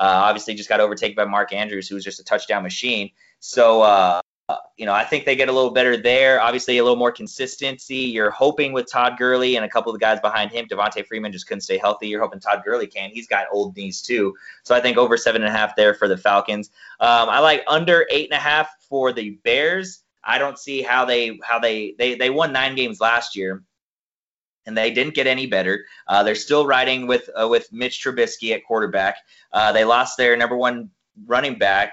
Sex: male